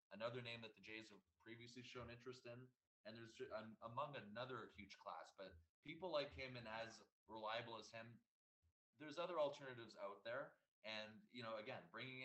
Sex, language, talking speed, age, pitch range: male, English, 175 wpm, 20-39, 100-120 Hz